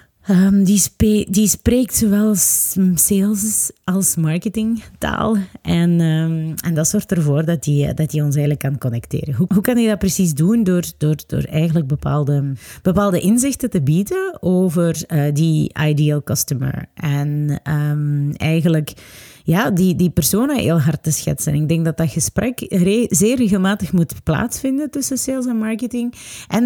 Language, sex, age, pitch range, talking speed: Dutch, female, 30-49, 150-205 Hz, 145 wpm